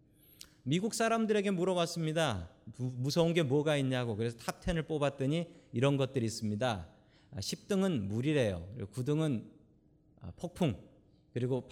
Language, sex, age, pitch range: Korean, male, 40-59, 110-175 Hz